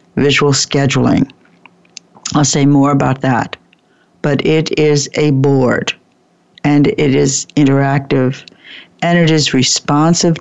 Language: English